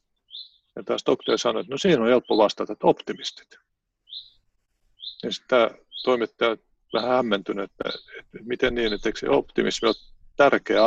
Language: Finnish